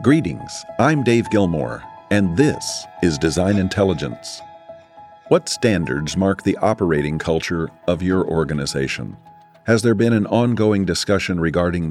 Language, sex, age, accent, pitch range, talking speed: English, male, 50-69, American, 80-110 Hz, 125 wpm